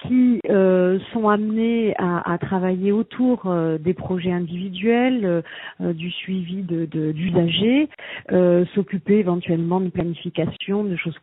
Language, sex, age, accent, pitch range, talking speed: French, female, 40-59, French, 175-210 Hz, 135 wpm